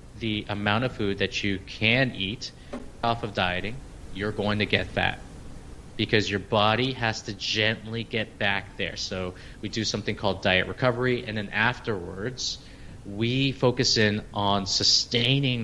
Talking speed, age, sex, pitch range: 155 wpm, 30-49, male, 100-125 Hz